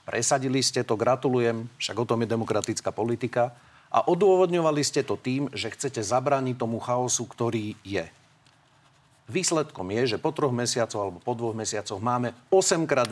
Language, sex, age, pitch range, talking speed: Slovak, male, 40-59, 115-145 Hz, 155 wpm